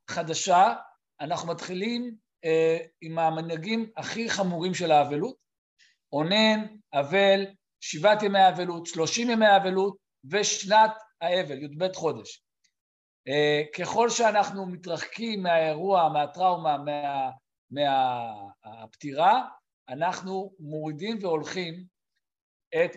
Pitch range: 155-195 Hz